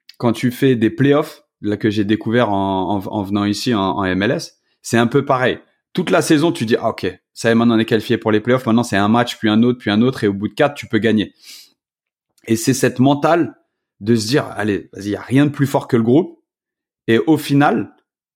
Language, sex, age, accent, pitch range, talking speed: French, male, 30-49, French, 110-140 Hz, 250 wpm